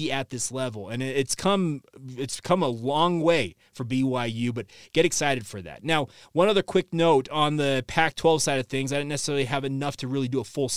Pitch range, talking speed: 130-155 Hz, 215 wpm